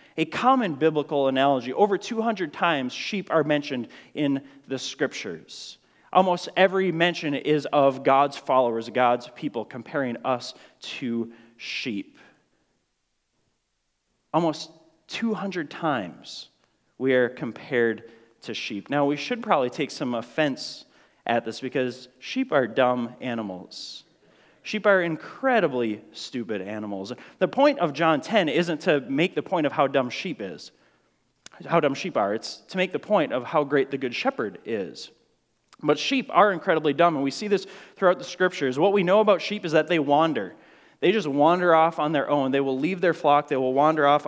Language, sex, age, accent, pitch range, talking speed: English, male, 30-49, American, 135-185 Hz, 165 wpm